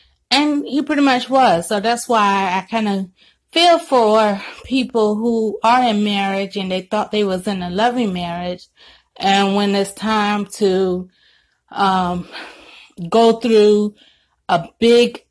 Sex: female